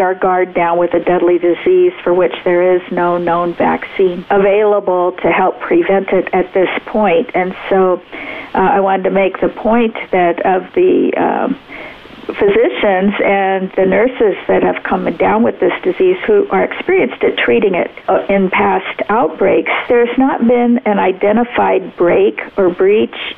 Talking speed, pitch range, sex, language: 160 wpm, 185-225 Hz, female, English